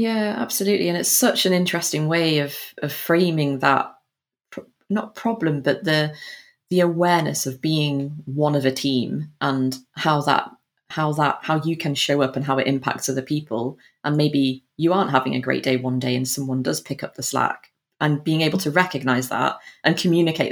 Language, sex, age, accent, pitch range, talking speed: English, female, 30-49, British, 130-160 Hz, 195 wpm